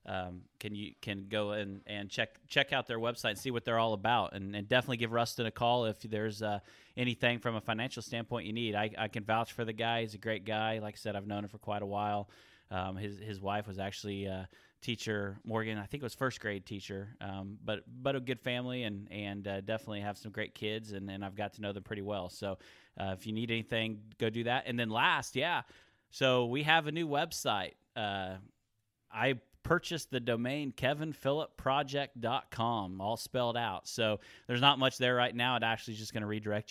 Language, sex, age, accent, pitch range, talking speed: English, male, 30-49, American, 100-115 Hz, 220 wpm